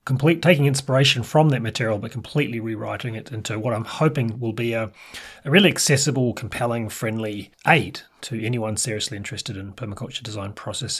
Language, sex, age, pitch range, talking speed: English, male, 30-49, 110-140 Hz, 170 wpm